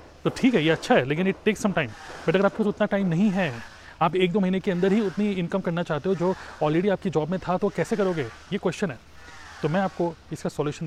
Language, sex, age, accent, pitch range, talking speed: Hindi, male, 30-49, native, 155-200 Hz, 265 wpm